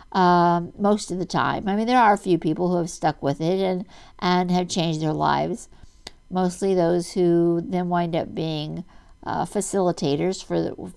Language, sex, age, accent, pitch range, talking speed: English, female, 60-79, American, 175-210 Hz, 185 wpm